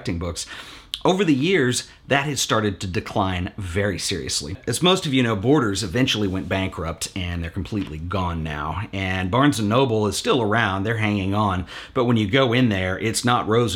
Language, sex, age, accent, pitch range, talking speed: English, male, 40-59, American, 95-130 Hz, 190 wpm